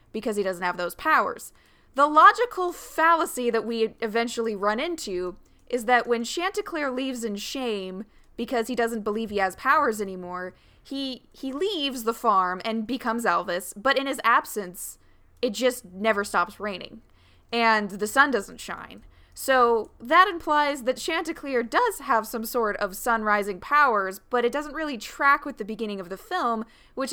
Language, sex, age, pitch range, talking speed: English, female, 20-39, 210-270 Hz, 165 wpm